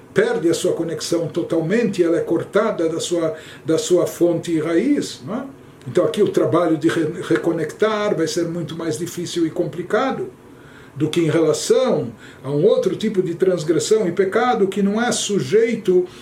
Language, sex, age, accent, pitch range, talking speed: Portuguese, male, 60-79, Brazilian, 160-215 Hz, 170 wpm